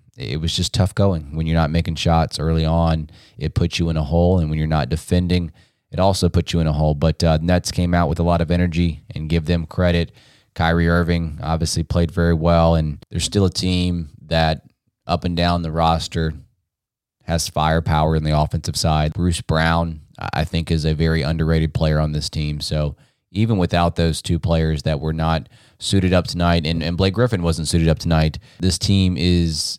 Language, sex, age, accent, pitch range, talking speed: English, male, 20-39, American, 80-90 Hz, 205 wpm